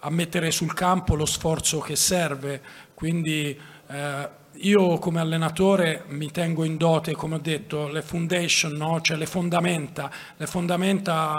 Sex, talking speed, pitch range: male, 150 wpm, 155-180 Hz